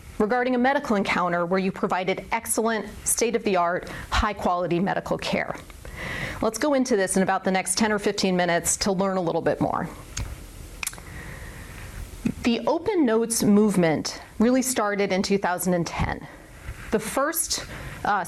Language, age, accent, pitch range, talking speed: English, 30-49, American, 185-235 Hz, 150 wpm